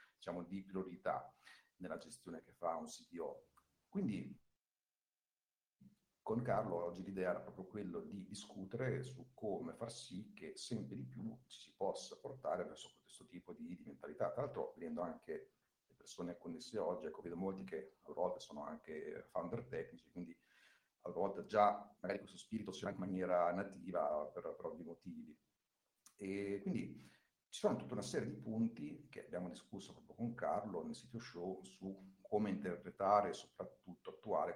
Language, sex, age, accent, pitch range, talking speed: Italian, male, 50-69, native, 95-135 Hz, 160 wpm